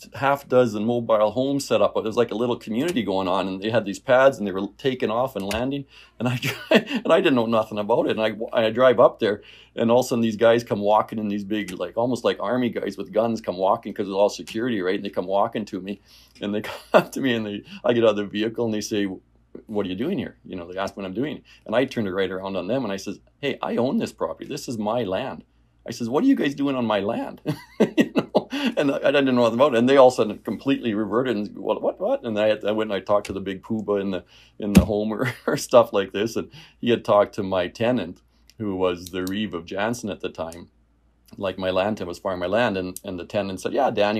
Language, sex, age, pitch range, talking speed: English, male, 40-59, 95-120 Hz, 280 wpm